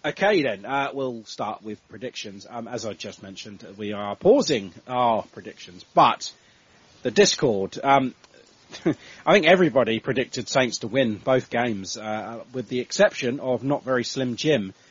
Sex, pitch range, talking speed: male, 105-125 Hz, 155 wpm